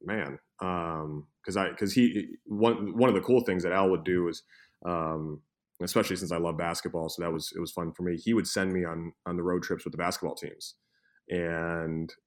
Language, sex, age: English, male, 30-49